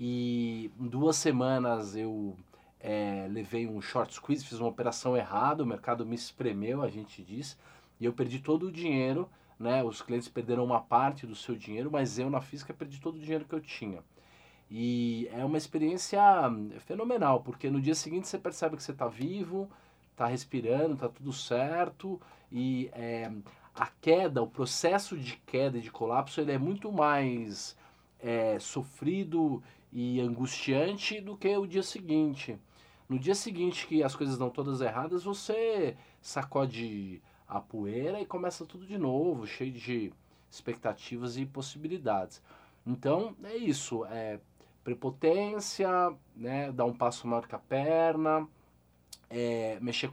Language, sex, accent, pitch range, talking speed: Portuguese, male, Brazilian, 115-155 Hz, 150 wpm